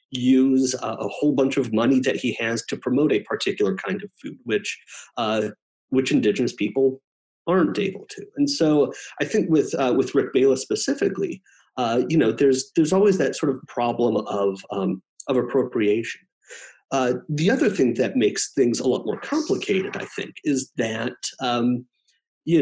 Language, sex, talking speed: English, male, 175 wpm